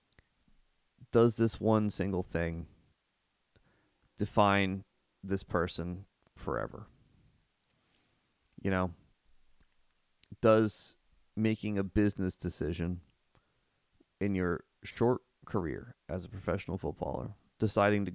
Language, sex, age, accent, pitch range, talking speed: English, male, 30-49, American, 85-105 Hz, 85 wpm